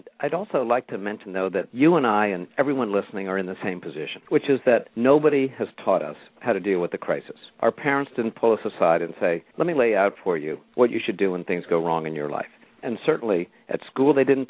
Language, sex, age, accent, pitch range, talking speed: English, male, 50-69, American, 95-125 Hz, 255 wpm